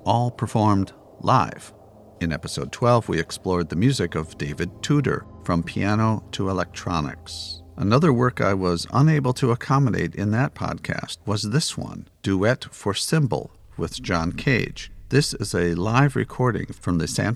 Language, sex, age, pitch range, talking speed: English, male, 50-69, 90-120 Hz, 150 wpm